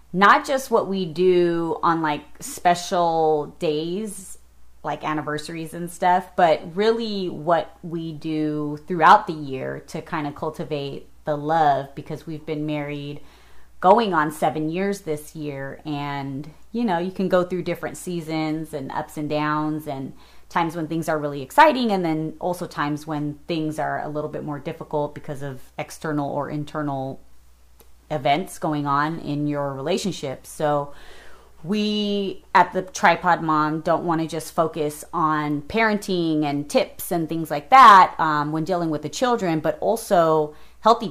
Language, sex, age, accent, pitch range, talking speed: English, female, 30-49, American, 150-175 Hz, 160 wpm